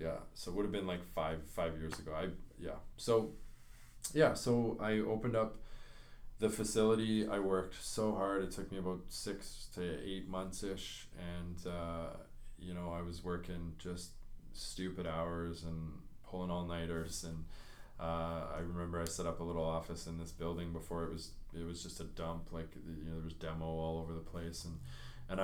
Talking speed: 190 wpm